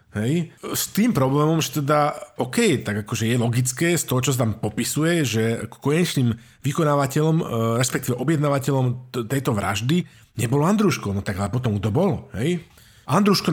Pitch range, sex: 115-155 Hz, male